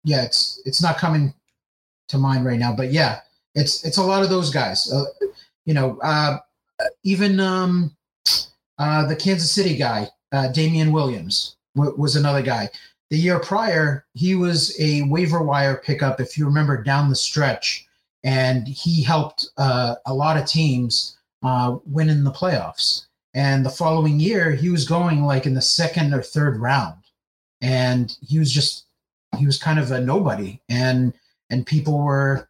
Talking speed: 170 wpm